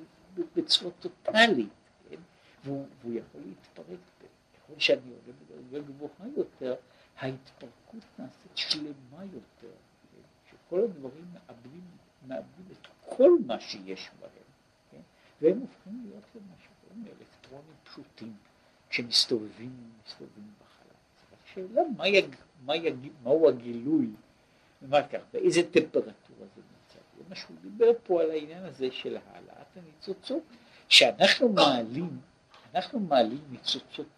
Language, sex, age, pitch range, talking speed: Hebrew, male, 60-79, 130-210 Hz, 110 wpm